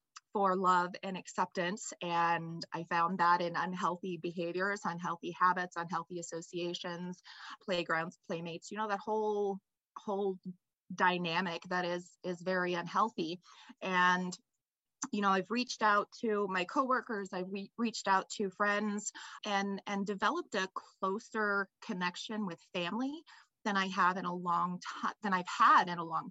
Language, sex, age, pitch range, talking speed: English, female, 20-39, 180-205 Hz, 145 wpm